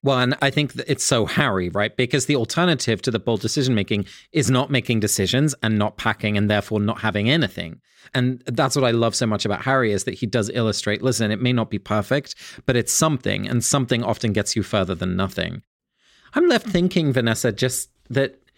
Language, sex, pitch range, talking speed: English, male, 105-135 Hz, 205 wpm